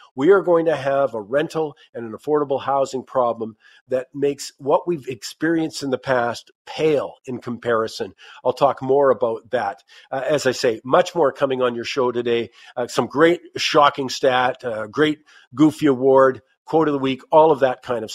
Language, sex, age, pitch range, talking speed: English, male, 50-69, 125-170 Hz, 190 wpm